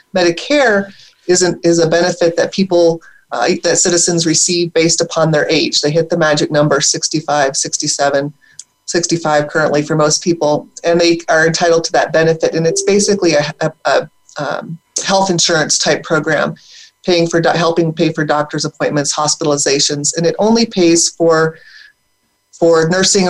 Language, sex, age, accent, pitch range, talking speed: English, female, 30-49, American, 155-175 Hz, 155 wpm